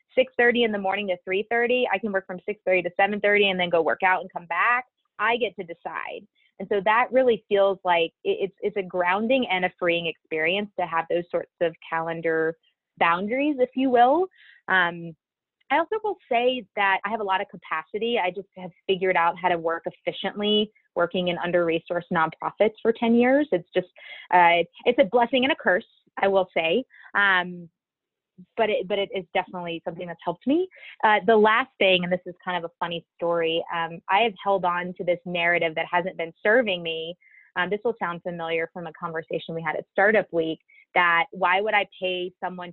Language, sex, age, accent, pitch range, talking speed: English, female, 20-39, American, 170-215 Hz, 200 wpm